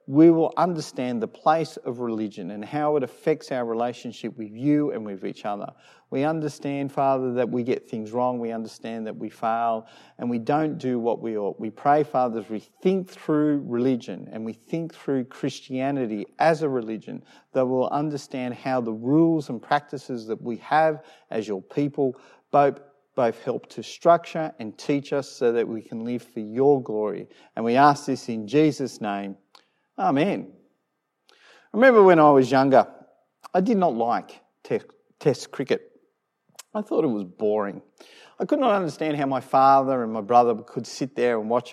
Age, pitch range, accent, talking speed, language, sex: 40-59, 120-150 Hz, Australian, 180 wpm, English, male